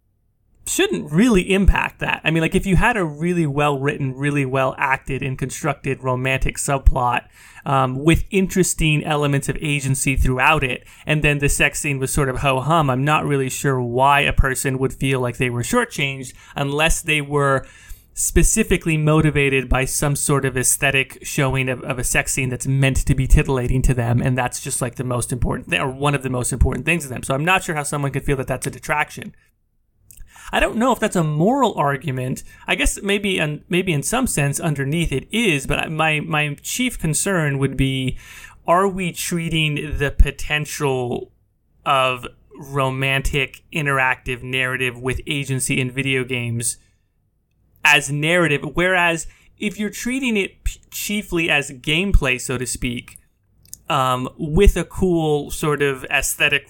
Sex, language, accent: male, English, American